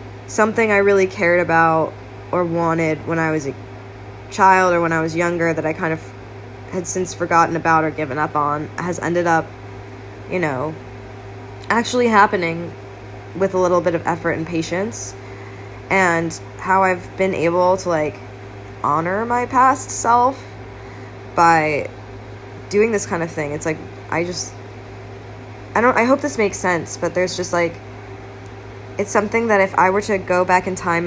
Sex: female